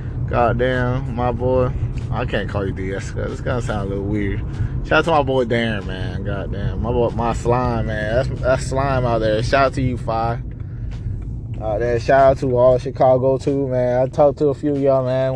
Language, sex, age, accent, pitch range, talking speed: English, male, 20-39, American, 110-140 Hz, 220 wpm